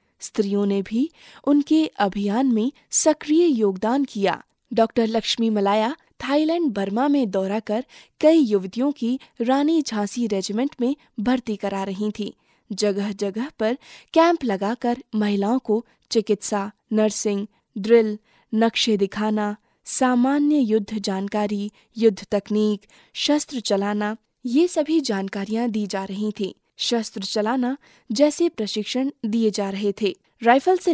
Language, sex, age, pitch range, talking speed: Hindi, female, 20-39, 210-270 Hz, 125 wpm